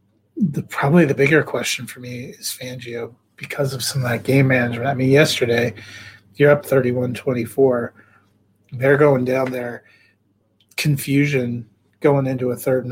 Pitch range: 120-135 Hz